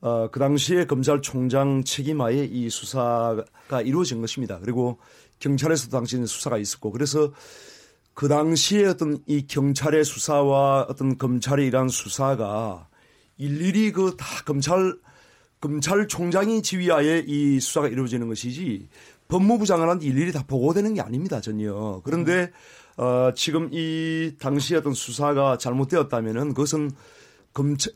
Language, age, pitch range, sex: Korean, 30-49, 125-155 Hz, male